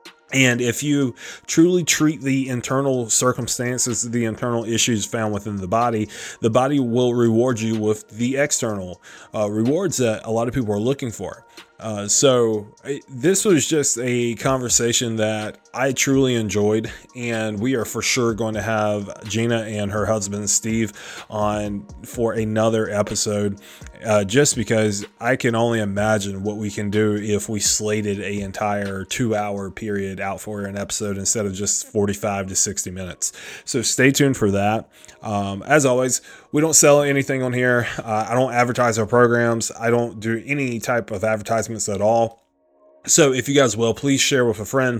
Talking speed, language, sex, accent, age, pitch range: 175 wpm, English, male, American, 30-49, 105-120 Hz